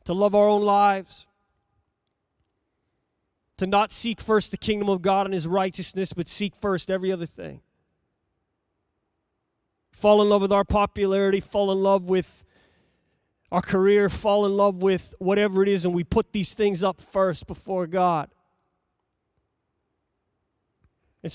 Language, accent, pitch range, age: English, American, 170-225 Hz, 30-49